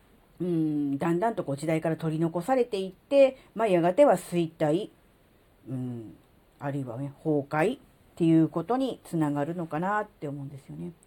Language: Japanese